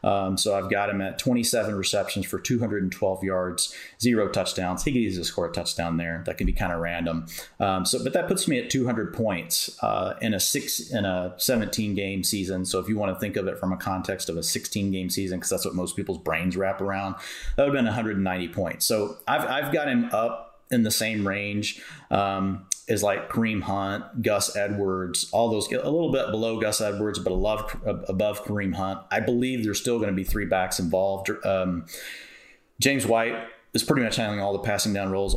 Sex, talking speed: male, 215 wpm